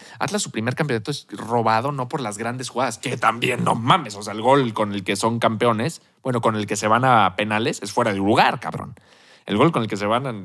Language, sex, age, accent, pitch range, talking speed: Spanish, male, 20-39, Mexican, 105-135 Hz, 260 wpm